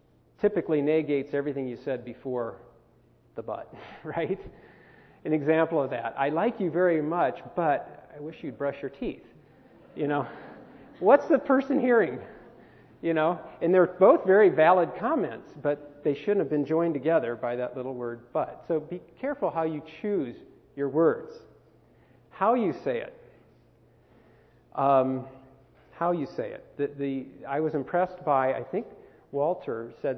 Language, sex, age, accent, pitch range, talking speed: English, male, 40-59, American, 135-175 Hz, 155 wpm